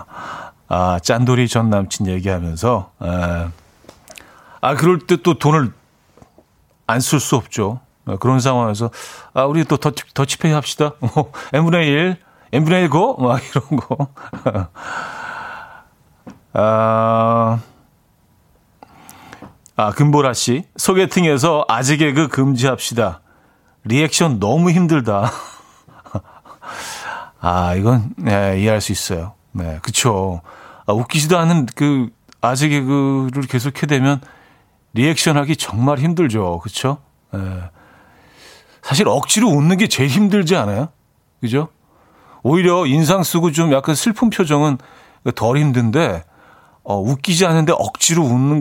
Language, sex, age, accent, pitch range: Korean, male, 40-59, native, 110-155 Hz